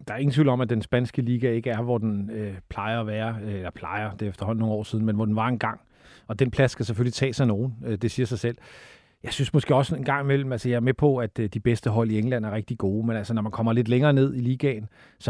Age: 40-59